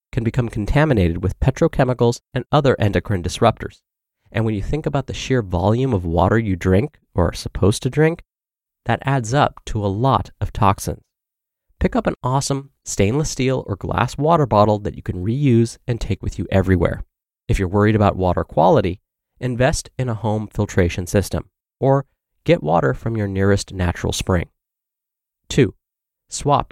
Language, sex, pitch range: English, male, 100-135 Hz